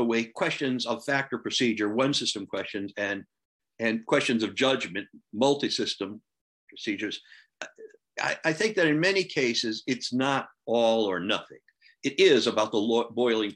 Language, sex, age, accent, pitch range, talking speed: English, male, 60-79, American, 105-140 Hz, 145 wpm